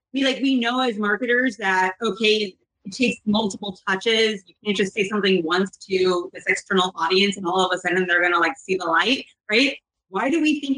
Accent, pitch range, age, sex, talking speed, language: American, 180-225 Hz, 30-49, female, 210 wpm, English